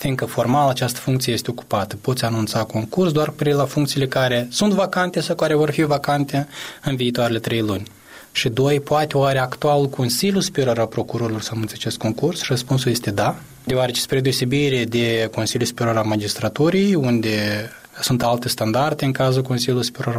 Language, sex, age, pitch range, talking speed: Romanian, male, 20-39, 115-140 Hz, 170 wpm